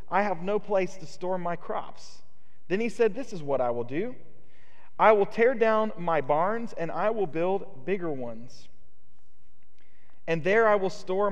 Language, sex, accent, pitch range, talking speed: English, male, American, 130-190 Hz, 180 wpm